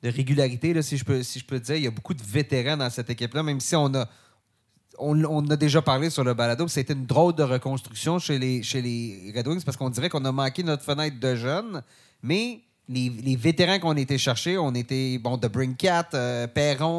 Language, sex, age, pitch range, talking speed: French, male, 30-49, 125-160 Hz, 235 wpm